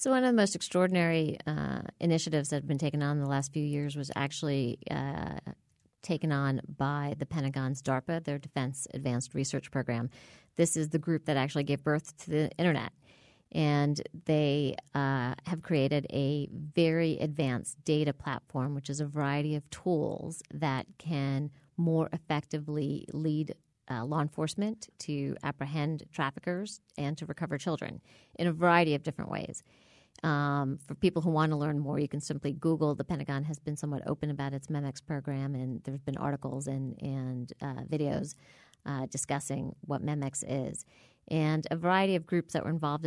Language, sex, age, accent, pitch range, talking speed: English, female, 40-59, American, 140-160 Hz, 175 wpm